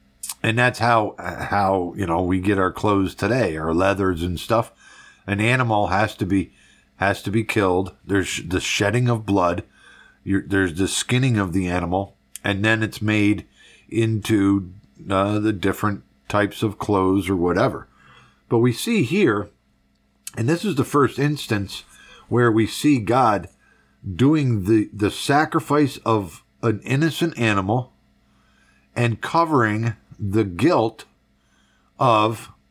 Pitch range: 85-115 Hz